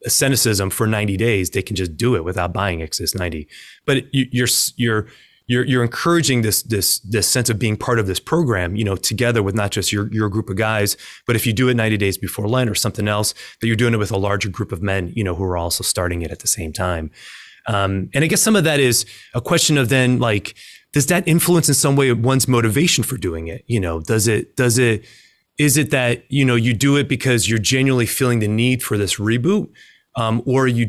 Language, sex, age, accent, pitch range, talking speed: English, male, 30-49, American, 100-130 Hz, 245 wpm